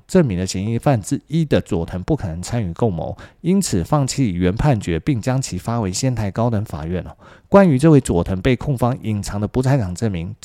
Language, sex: Chinese, male